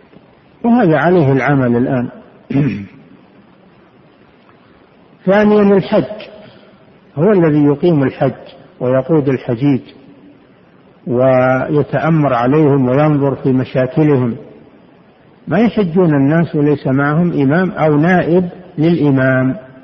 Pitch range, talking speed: 135-175 Hz, 80 wpm